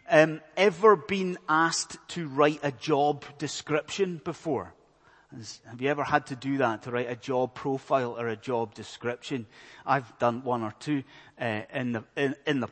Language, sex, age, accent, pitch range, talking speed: English, male, 30-49, British, 125-160 Hz, 175 wpm